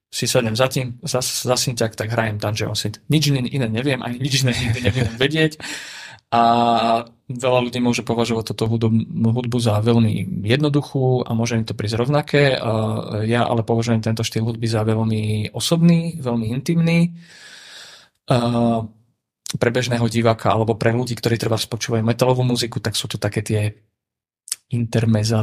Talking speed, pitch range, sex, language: 145 wpm, 110-125 Hz, male, Czech